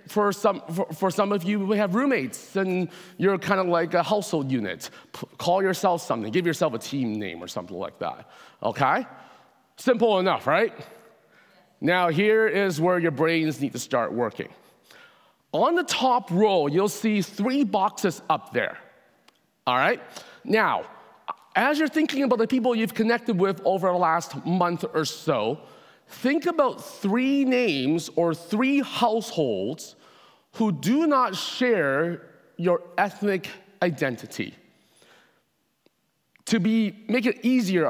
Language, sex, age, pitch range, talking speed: English, male, 40-59, 165-235 Hz, 145 wpm